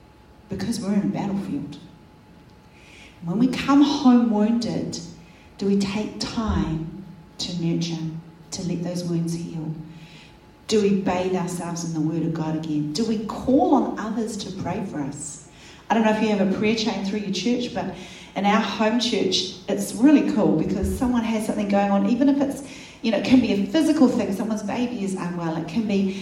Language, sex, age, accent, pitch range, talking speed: English, female, 40-59, Australian, 170-220 Hz, 190 wpm